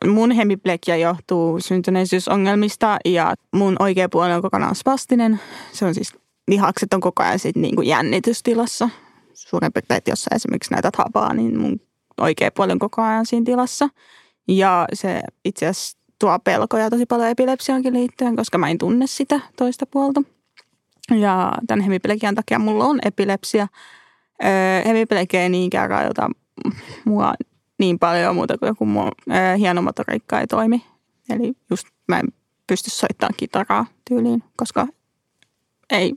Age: 20-39